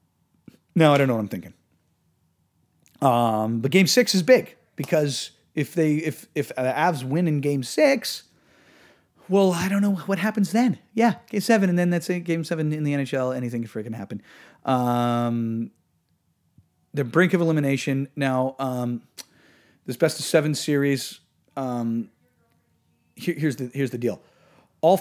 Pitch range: 120-160 Hz